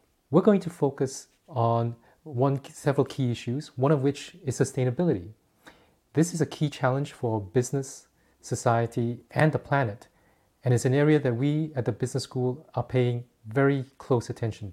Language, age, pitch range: English, 30-49, 115-140 Hz